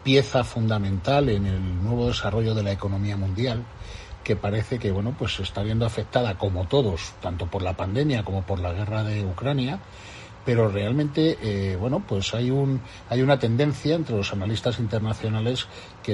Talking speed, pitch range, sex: 165 wpm, 105-125 Hz, male